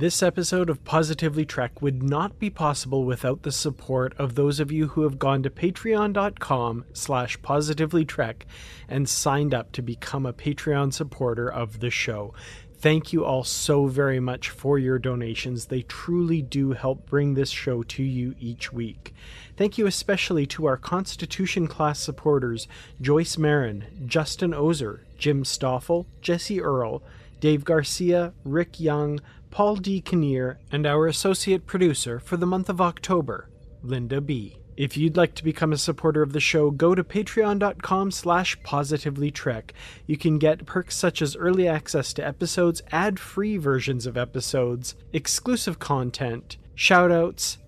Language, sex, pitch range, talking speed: English, male, 130-170 Hz, 150 wpm